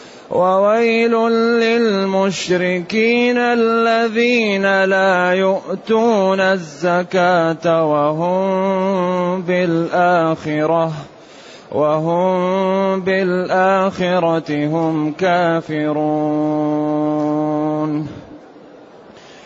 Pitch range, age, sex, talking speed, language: 165-190 Hz, 30-49, male, 35 wpm, Arabic